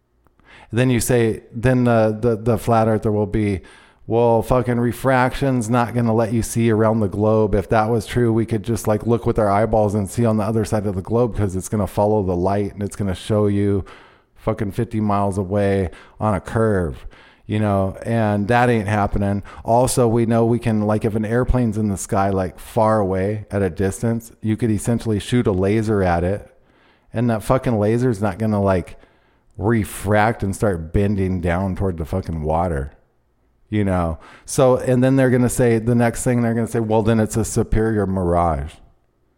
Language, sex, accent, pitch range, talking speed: English, male, American, 95-115 Hz, 205 wpm